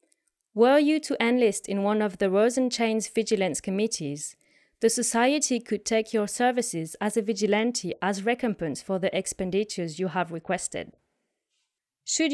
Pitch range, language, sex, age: 195-240 Hz, English, female, 30-49